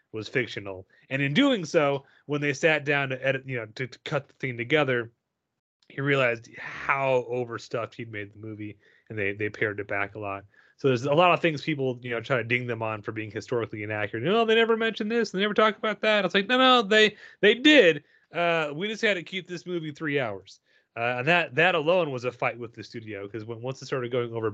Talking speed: 250 wpm